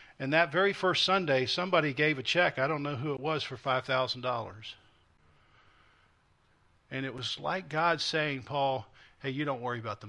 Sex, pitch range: male, 115-150 Hz